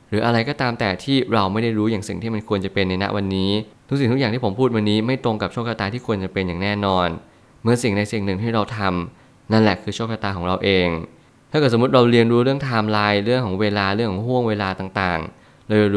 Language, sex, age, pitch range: Thai, male, 20-39, 100-120 Hz